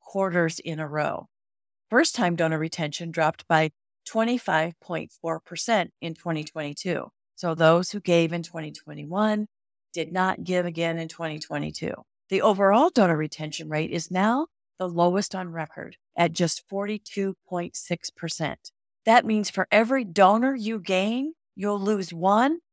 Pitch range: 165-215 Hz